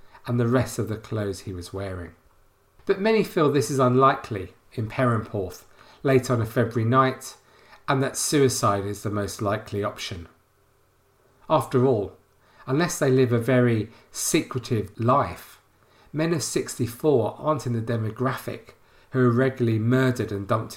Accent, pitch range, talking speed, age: British, 105-130 Hz, 150 wpm, 40-59